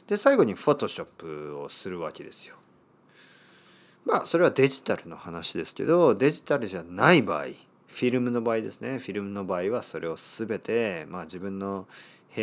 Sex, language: male, Japanese